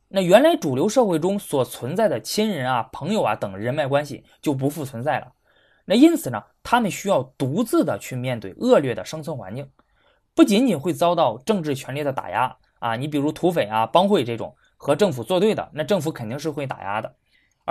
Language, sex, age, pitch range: Chinese, male, 20-39, 140-210 Hz